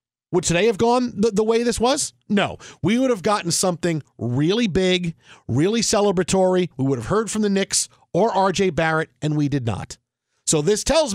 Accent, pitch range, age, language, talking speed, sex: American, 145-200 Hz, 40-59, English, 195 wpm, male